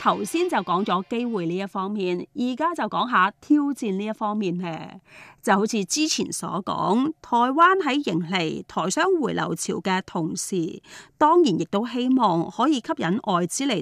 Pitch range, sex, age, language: 185-275 Hz, female, 30-49, Chinese